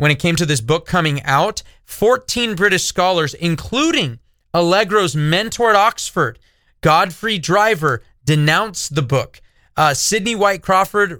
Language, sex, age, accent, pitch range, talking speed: English, male, 30-49, American, 155-205 Hz, 135 wpm